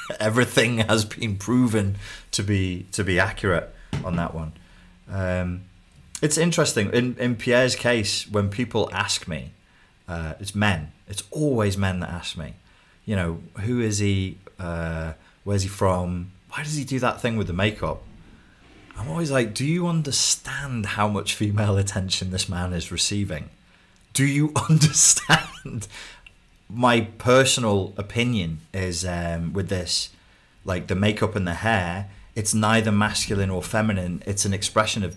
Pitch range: 90-110 Hz